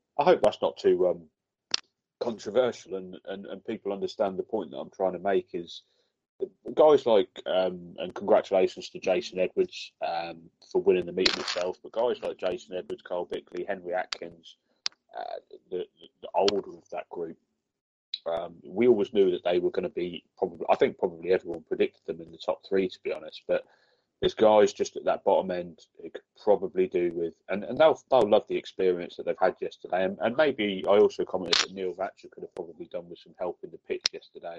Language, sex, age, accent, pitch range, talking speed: English, male, 30-49, British, 370-440 Hz, 205 wpm